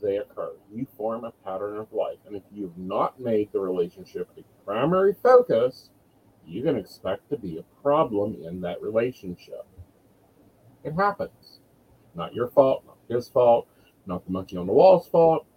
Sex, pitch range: male, 110-155 Hz